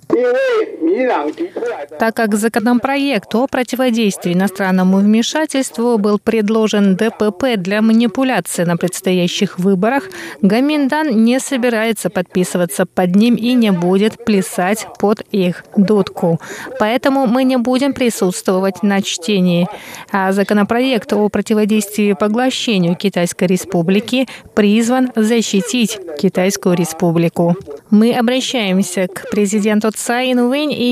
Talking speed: 100 wpm